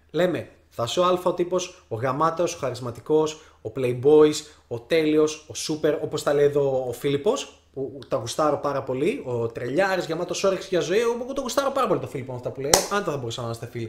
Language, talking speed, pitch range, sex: Greek, 220 wpm, 115-155 Hz, male